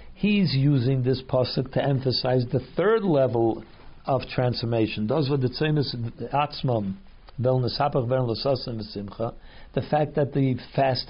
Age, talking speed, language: 60-79, 135 wpm, English